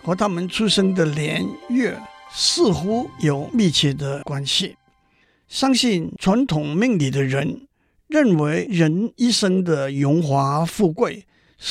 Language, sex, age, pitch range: Chinese, male, 50-69, 150-210 Hz